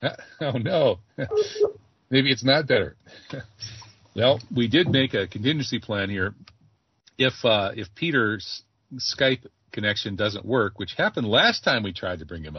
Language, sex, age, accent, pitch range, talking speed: English, male, 40-59, American, 95-120 Hz, 150 wpm